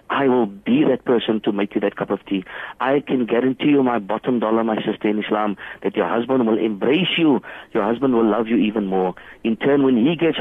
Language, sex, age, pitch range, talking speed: English, male, 50-69, 110-155 Hz, 235 wpm